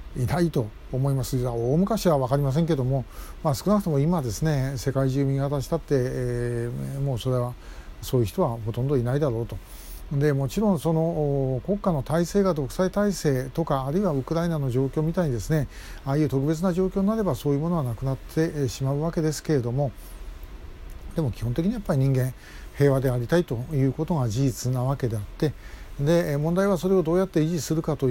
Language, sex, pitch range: Japanese, male, 130-170 Hz